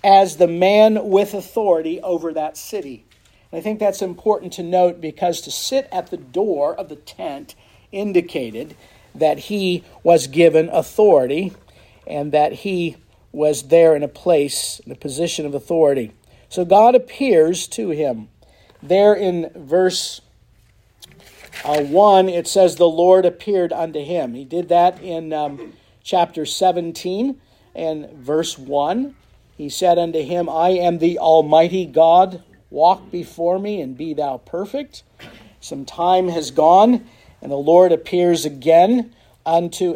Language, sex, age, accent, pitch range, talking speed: English, male, 50-69, American, 155-190 Hz, 145 wpm